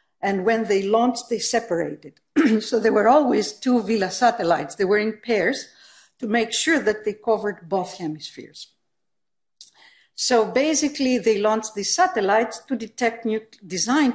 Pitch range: 195-250 Hz